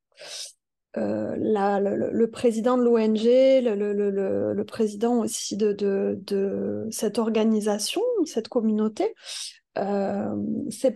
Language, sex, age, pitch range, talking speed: French, female, 20-39, 220-260 Hz, 120 wpm